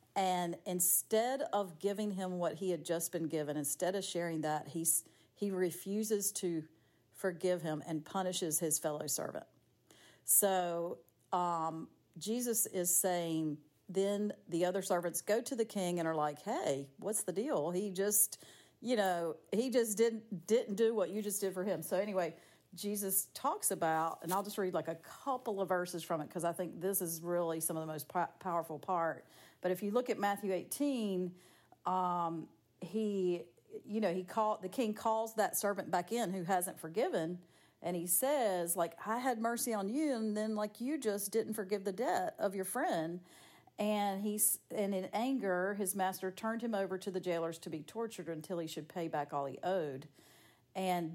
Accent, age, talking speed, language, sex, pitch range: American, 50-69, 185 wpm, English, female, 165-205 Hz